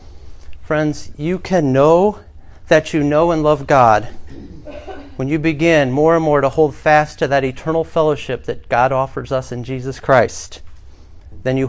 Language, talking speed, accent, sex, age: English, 165 wpm, American, male, 40-59